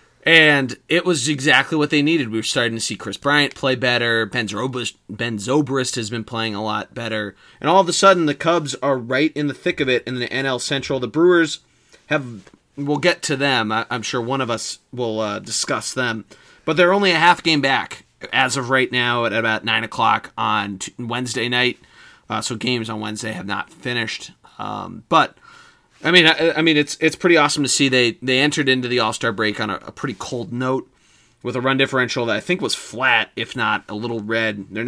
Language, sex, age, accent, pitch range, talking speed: English, male, 30-49, American, 115-145 Hz, 215 wpm